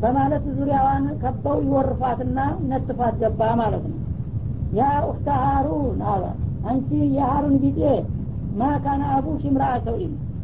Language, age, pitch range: Amharic, 40-59, 125-135 Hz